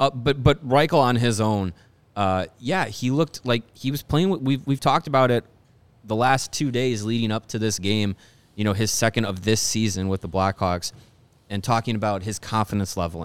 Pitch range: 100-125 Hz